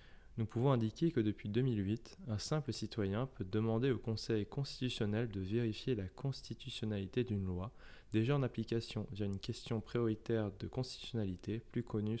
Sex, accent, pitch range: male, French, 100-120 Hz